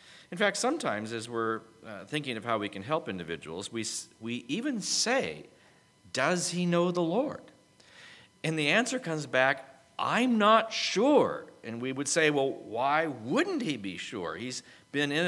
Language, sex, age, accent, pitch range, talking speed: English, male, 40-59, American, 125-200 Hz, 160 wpm